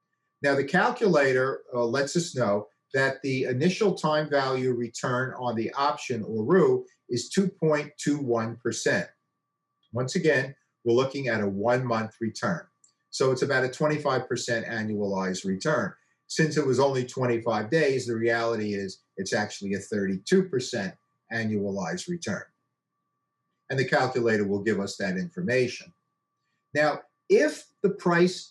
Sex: male